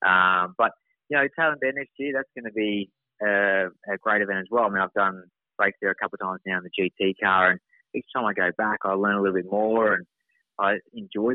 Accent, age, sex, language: Australian, 20-39, male, English